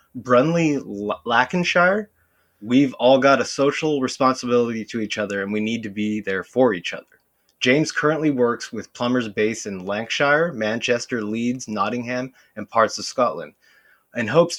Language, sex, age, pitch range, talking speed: English, male, 30-49, 105-130 Hz, 150 wpm